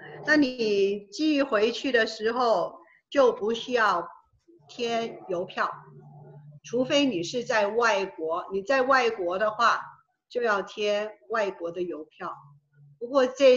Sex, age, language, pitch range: female, 50-69, Chinese, 185-240 Hz